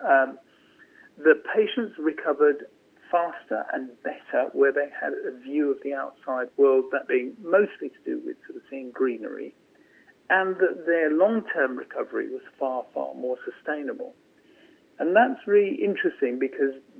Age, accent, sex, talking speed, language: 50-69, British, male, 145 wpm, English